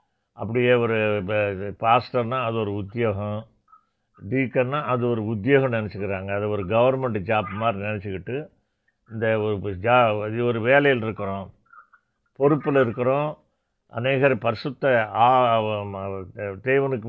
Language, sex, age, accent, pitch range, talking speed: Tamil, male, 50-69, native, 105-135 Hz, 100 wpm